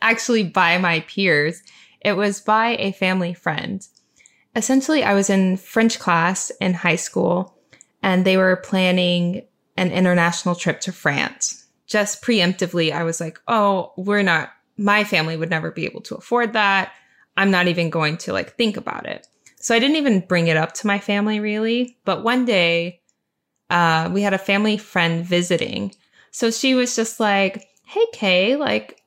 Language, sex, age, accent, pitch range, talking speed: English, female, 10-29, American, 175-225 Hz, 170 wpm